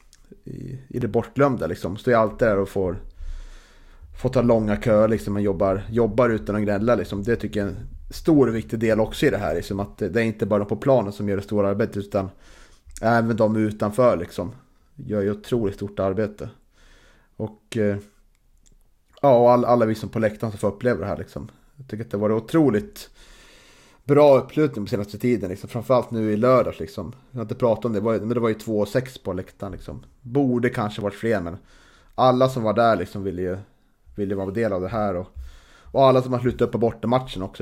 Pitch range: 95-120 Hz